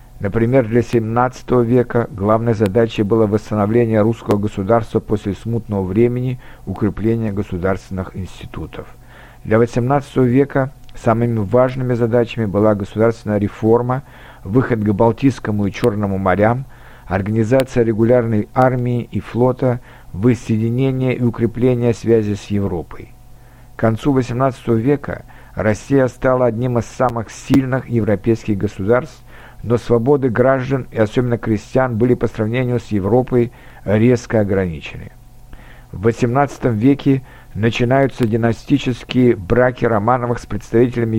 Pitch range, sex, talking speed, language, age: 110-125 Hz, male, 110 wpm, Russian, 50-69